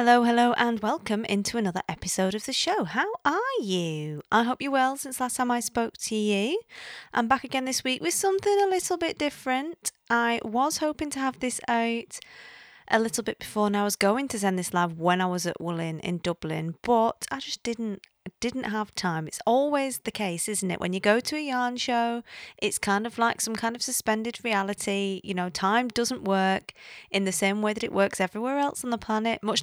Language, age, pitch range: English, 30-49, 190-255 Hz